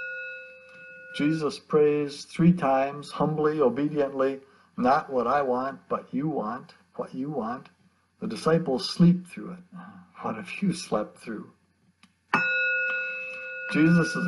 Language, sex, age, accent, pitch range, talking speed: English, male, 60-79, American, 145-240 Hz, 120 wpm